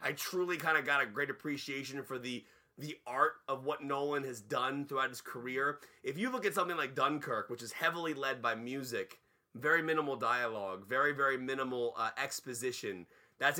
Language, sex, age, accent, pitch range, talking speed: English, male, 30-49, American, 125-155 Hz, 185 wpm